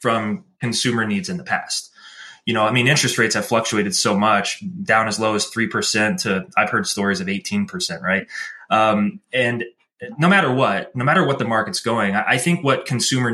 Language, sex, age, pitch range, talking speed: English, male, 20-39, 110-145 Hz, 195 wpm